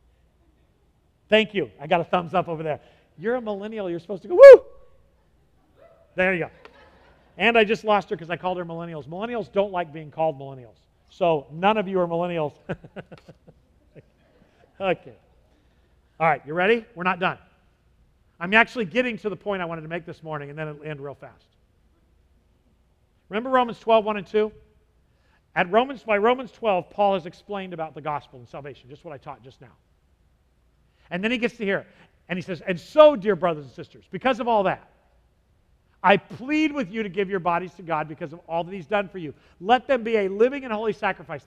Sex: male